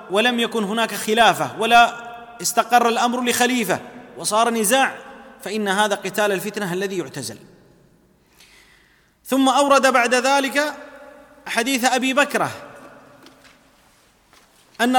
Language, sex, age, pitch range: Arabic, male, 30-49, 185-220 Hz